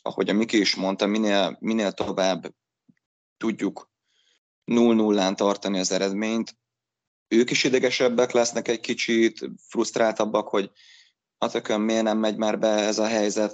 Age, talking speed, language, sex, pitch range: 30-49, 140 wpm, Hungarian, male, 100-110 Hz